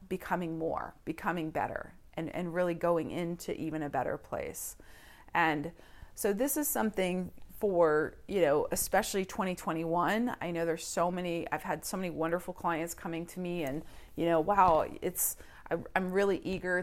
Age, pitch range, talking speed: 40-59, 160-185 Hz, 160 wpm